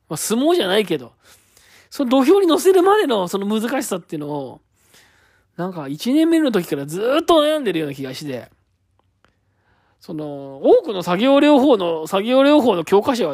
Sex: male